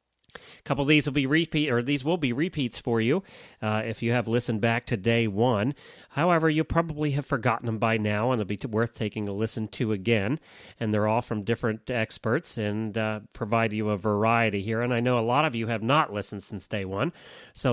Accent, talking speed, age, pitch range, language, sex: American, 230 wpm, 40-59, 110-140 Hz, English, male